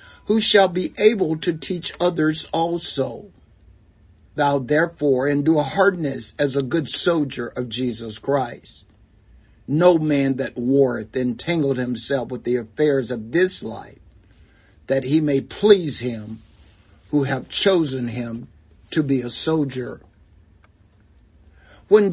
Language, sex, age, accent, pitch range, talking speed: English, male, 60-79, American, 110-155 Hz, 125 wpm